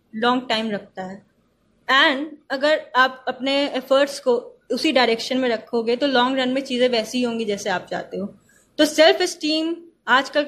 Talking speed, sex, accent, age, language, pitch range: 170 wpm, female, native, 20-39, Hindi, 235-290 Hz